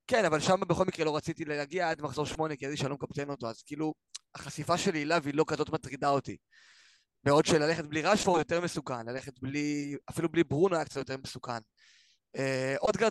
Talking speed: 190 wpm